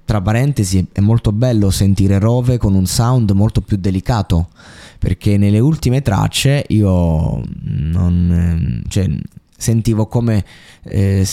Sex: male